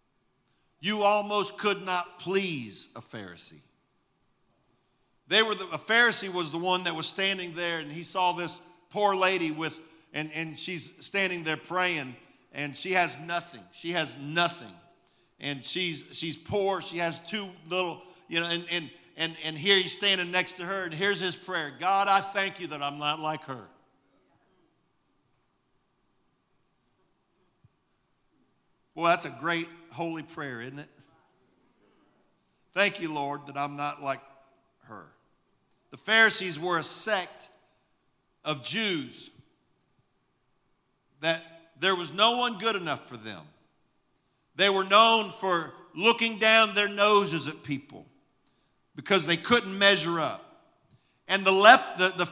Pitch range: 160-195 Hz